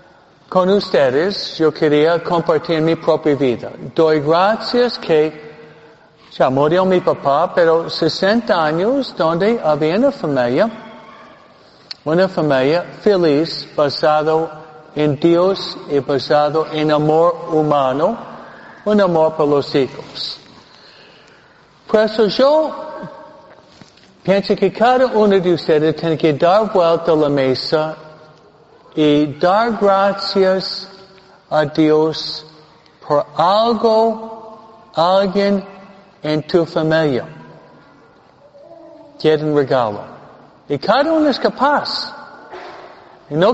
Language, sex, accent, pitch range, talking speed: Spanish, male, American, 155-210 Hz, 100 wpm